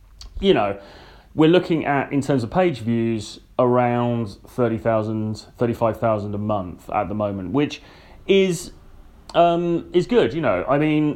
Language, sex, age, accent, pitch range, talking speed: English, male, 30-49, British, 105-125 Hz, 145 wpm